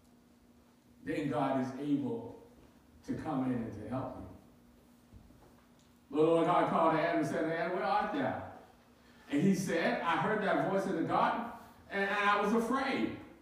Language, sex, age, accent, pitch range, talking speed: English, male, 40-59, American, 170-285 Hz, 165 wpm